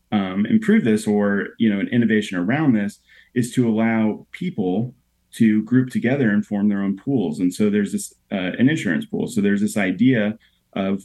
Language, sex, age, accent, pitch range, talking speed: English, male, 30-49, American, 95-115 Hz, 190 wpm